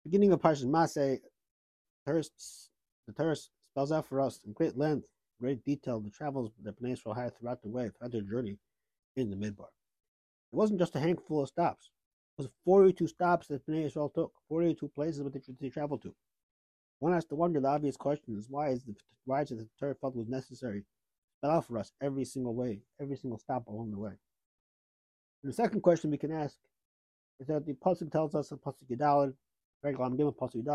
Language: English